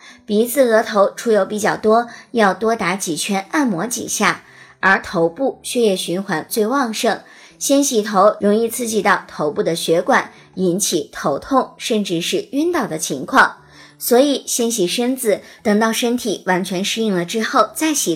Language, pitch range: Chinese, 190-245 Hz